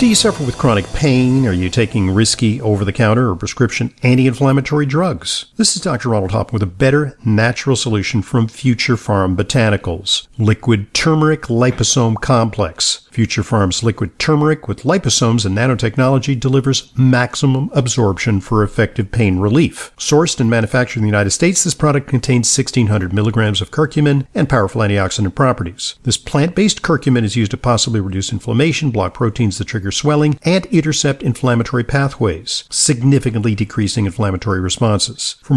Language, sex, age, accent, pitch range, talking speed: English, male, 50-69, American, 110-140 Hz, 150 wpm